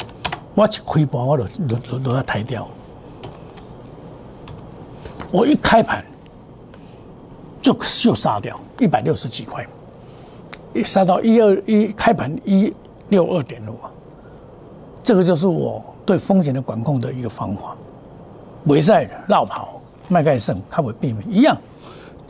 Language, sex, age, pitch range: Chinese, male, 60-79, 135-195 Hz